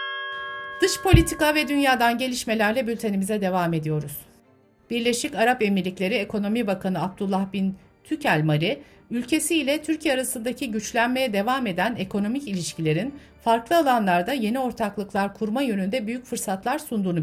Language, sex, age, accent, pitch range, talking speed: Turkish, female, 60-79, native, 170-245 Hz, 120 wpm